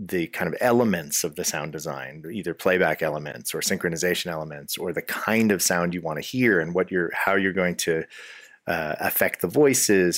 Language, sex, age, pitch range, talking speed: English, male, 30-49, 85-95 Hz, 200 wpm